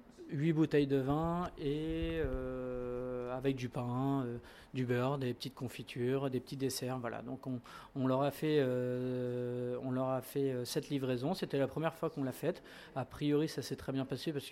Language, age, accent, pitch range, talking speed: French, 40-59, French, 125-140 Hz, 200 wpm